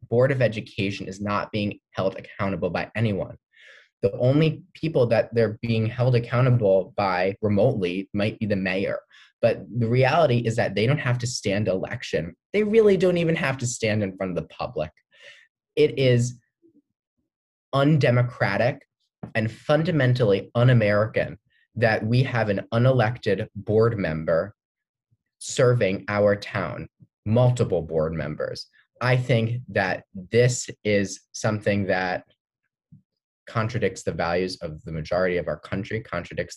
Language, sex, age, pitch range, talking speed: English, male, 20-39, 95-125 Hz, 135 wpm